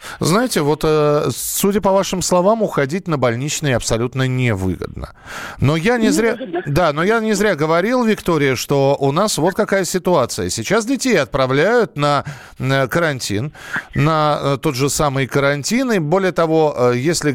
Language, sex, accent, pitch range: Russian, male, native, 130-205 Hz